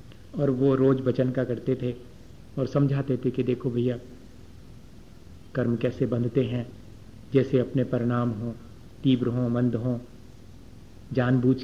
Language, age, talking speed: Hindi, 50-69, 130 wpm